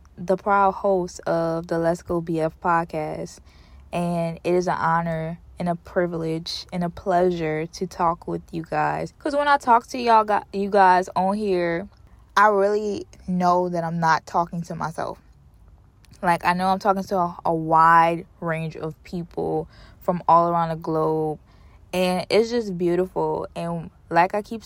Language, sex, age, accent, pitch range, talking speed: English, female, 20-39, American, 165-190 Hz, 170 wpm